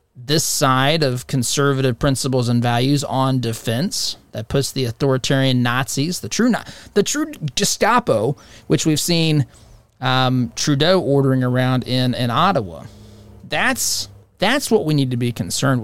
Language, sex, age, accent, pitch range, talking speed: English, male, 30-49, American, 115-155 Hz, 140 wpm